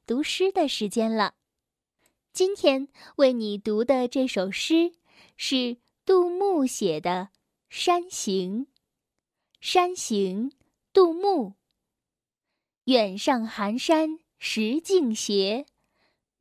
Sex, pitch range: female, 220-325 Hz